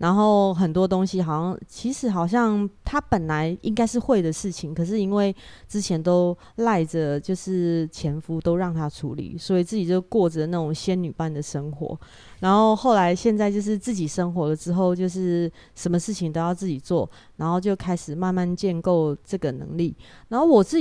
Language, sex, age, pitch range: Chinese, female, 30-49, 160-200 Hz